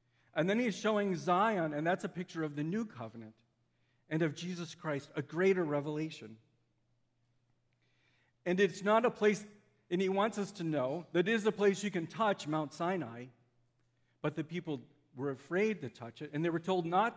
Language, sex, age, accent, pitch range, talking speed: English, male, 50-69, American, 125-175 Hz, 190 wpm